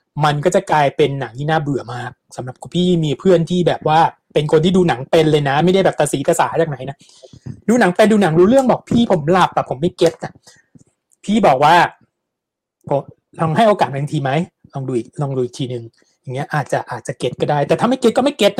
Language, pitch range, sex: Thai, 150-195 Hz, male